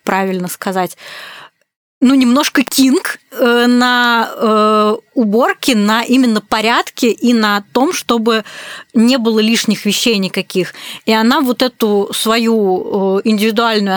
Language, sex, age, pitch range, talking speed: Russian, female, 20-39, 205-250 Hz, 105 wpm